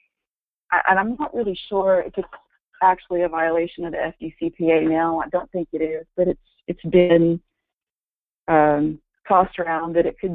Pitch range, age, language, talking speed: 165-190 Hz, 30-49, English, 170 wpm